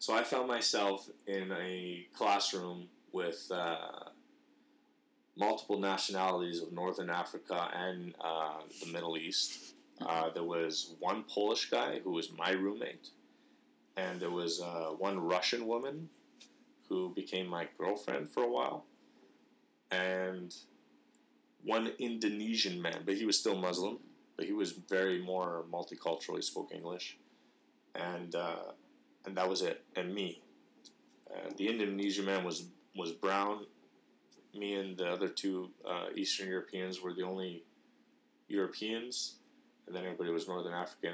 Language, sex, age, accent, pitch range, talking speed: English, male, 30-49, American, 90-105 Hz, 135 wpm